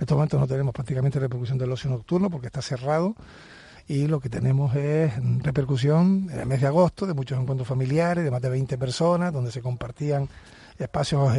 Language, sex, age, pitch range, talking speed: Spanish, male, 40-59, 130-150 Hz, 195 wpm